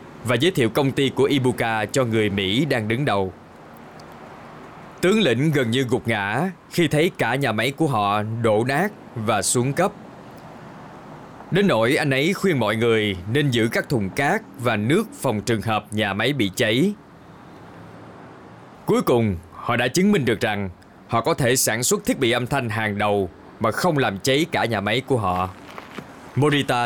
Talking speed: 180 wpm